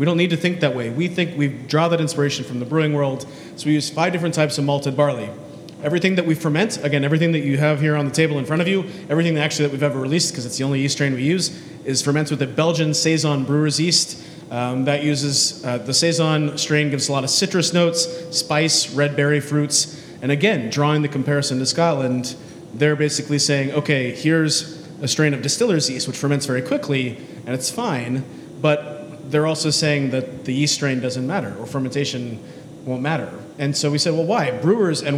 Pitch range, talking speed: 135-160 Hz, 220 wpm